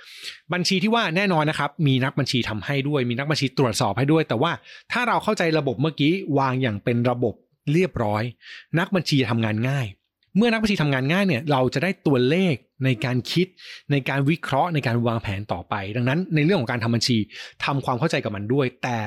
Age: 20-39